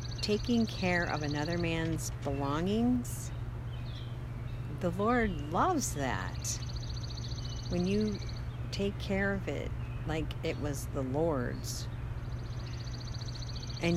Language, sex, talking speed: English, female, 95 wpm